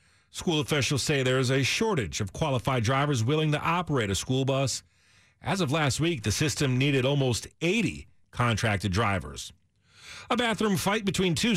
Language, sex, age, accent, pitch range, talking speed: English, male, 40-59, American, 120-180 Hz, 165 wpm